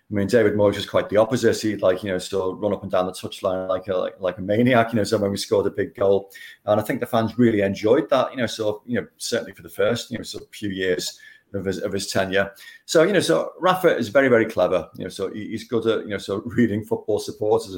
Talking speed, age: 270 wpm, 30-49